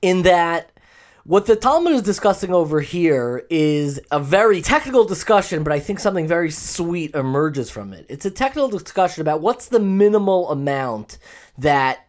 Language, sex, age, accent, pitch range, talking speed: English, male, 20-39, American, 140-200 Hz, 165 wpm